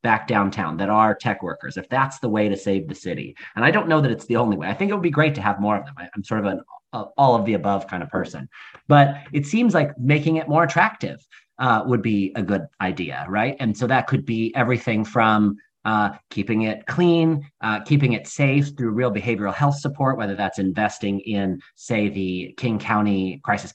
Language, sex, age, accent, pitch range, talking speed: English, male, 30-49, American, 105-135 Hz, 225 wpm